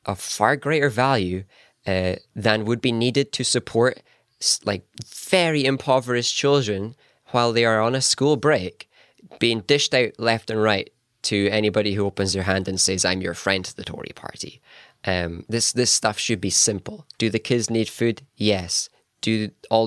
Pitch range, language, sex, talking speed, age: 100-120 Hz, English, male, 170 wpm, 20-39